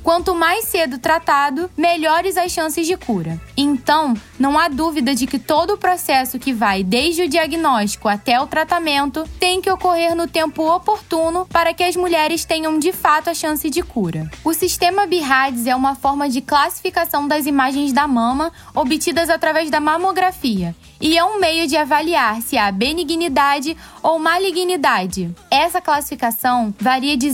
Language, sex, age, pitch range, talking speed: Portuguese, female, 10-29, 265-335 Hz, 160 wpm